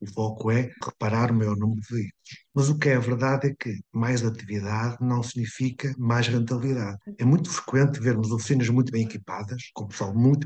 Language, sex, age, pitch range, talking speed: Italian, male, 50-69, 115-140 Hz, 190 wpm